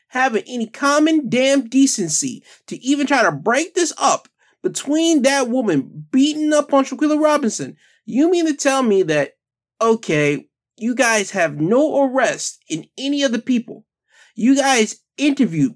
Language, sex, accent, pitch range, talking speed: English, male, American, 210-280 Hz, 150 wpm